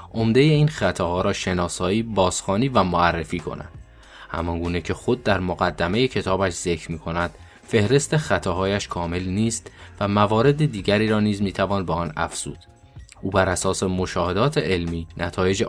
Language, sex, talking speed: Persian, male, 140 wpm